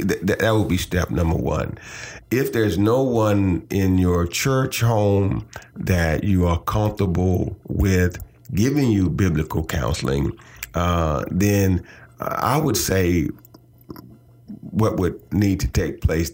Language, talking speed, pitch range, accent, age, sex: English, 125 wpm, 85-105 Hz, American, 40-59, male